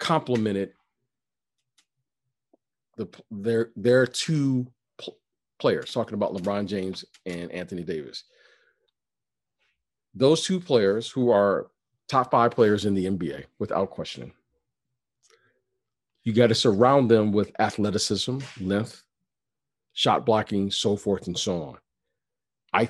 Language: English